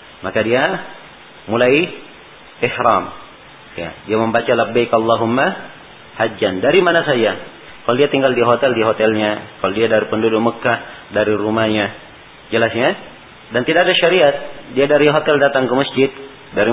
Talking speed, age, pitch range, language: 135 wpm, 40-59, 110-140 Hz, Malay